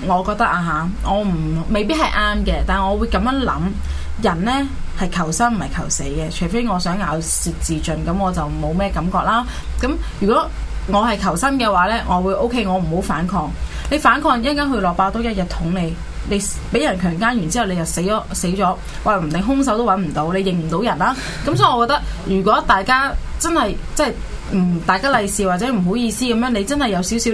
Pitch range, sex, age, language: 180-230 Hz, female, 20-39, Chinese